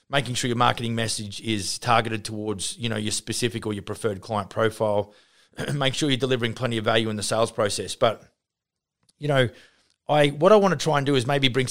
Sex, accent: male, Australian